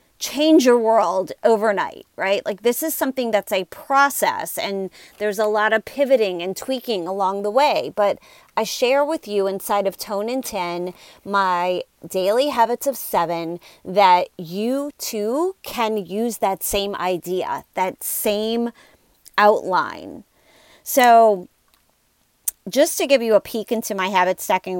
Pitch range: 195-265 Hz